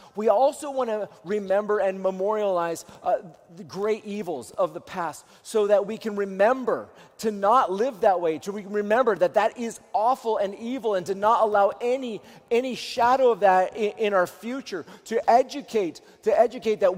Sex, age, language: male, 30-49, English